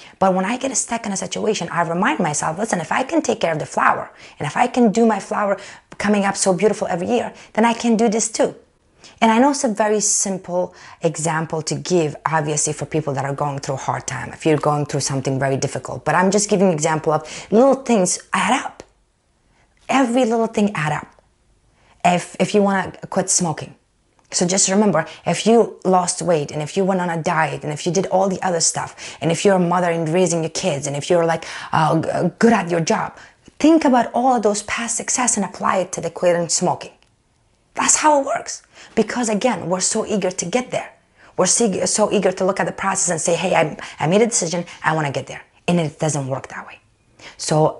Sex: female